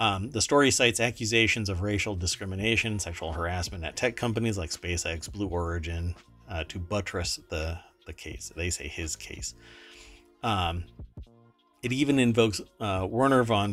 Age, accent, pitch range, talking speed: 40-59, American, 90-120 Hz, 150 wpm